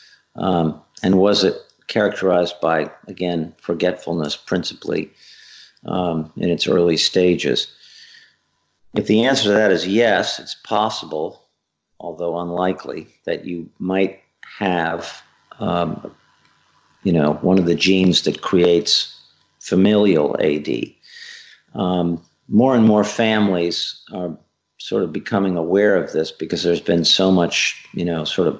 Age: 50-69